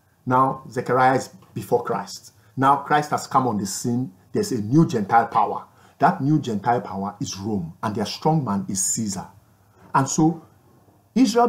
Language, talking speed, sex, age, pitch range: English, 165 wpm, male, 50-69, 115-180 Hz